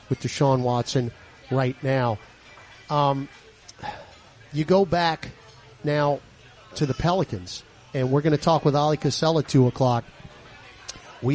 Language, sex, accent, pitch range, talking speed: English, male, American, 120-150 Hz, 130 wpm